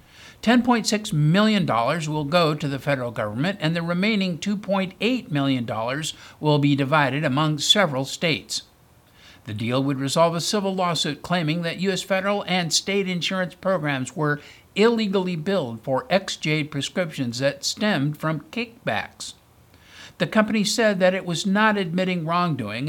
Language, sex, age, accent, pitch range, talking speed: English, male, 60-79, American, 140-190 Hz, 140 wpm